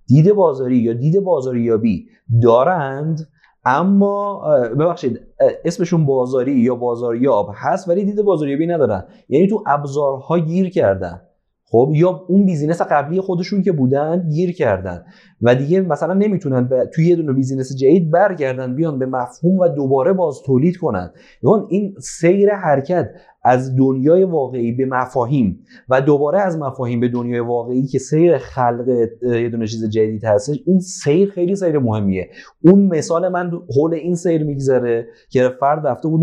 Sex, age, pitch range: male, 30-49, 125-175 Hz